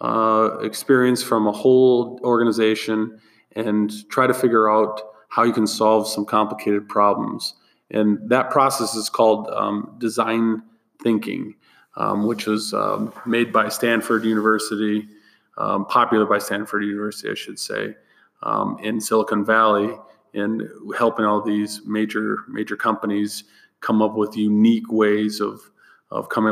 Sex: male